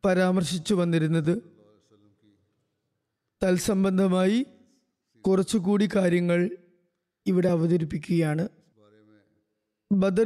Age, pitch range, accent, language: 20-39, 175-210 Hz, native, Malayalam